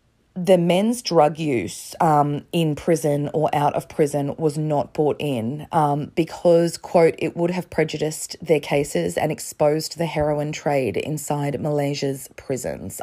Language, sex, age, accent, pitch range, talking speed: English, female, 20-39, Australian, 145-170 Hz, 145 wpm